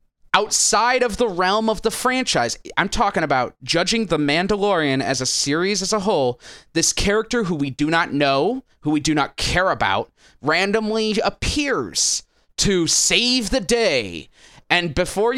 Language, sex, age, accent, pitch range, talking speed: English, male, 20-39, American, 140-220 Hz, 155 wpm